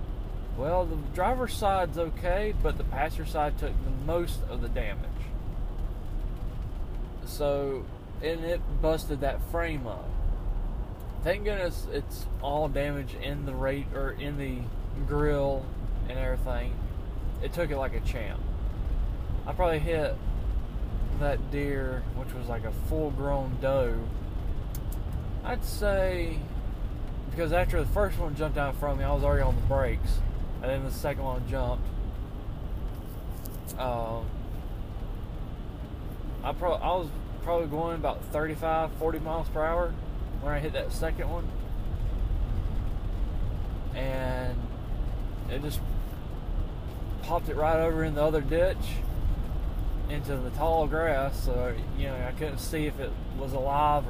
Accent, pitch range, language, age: American, 100-145 Hz, English, 20-39